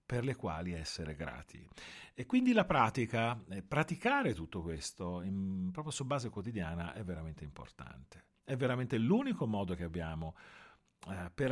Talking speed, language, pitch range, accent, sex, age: 140 wpm, Italian, 85-130 Hz, native, male, 40-59